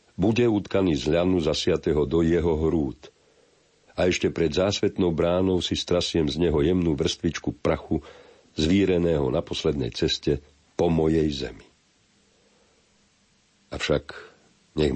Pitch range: 75-90 Hz